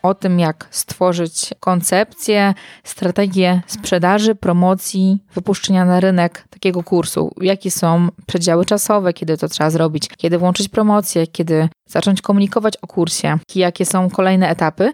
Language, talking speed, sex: Polish, 135 wpm, female